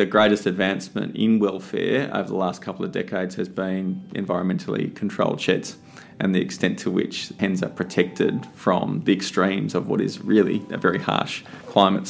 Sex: male